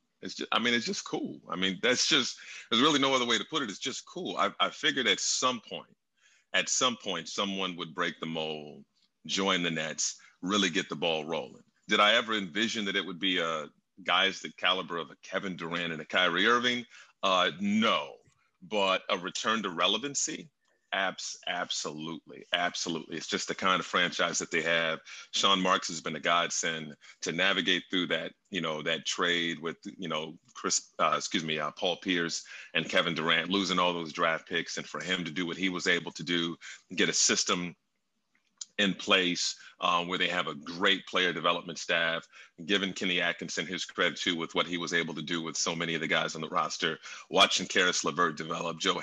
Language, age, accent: English, 40-59, American